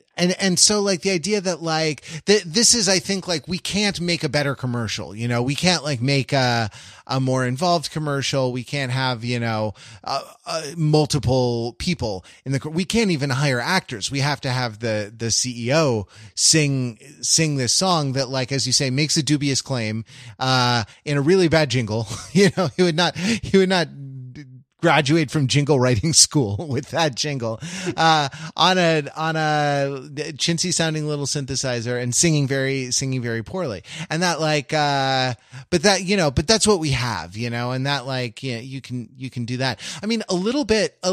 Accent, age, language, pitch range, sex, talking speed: American, 30-49, English, 130-175 Hz, male, 195 wpm